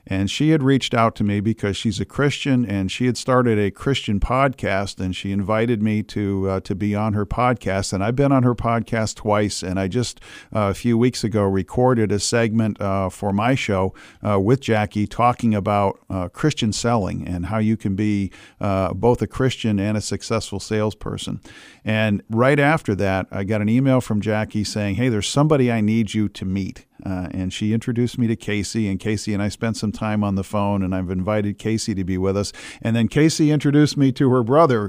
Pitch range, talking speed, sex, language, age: 100-115 Hz, 215 wpm, male, English, 50-69